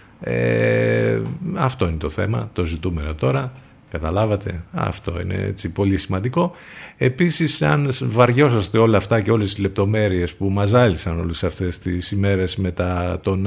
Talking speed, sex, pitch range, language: 140 wpm, male, 95-115 Hz, Greek